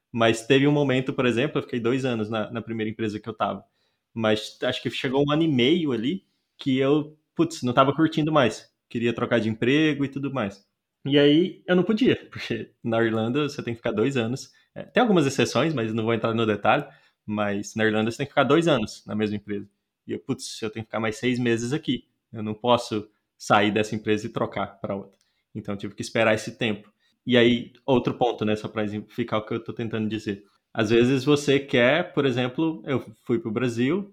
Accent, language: Brazilian, Portuguese